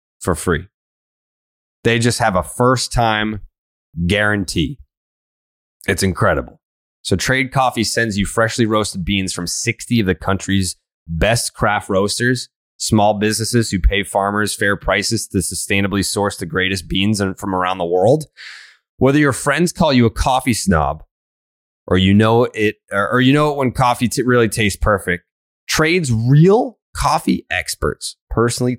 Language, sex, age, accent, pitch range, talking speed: English, male, 20-39, American, 85-115 Hz, 140 wpm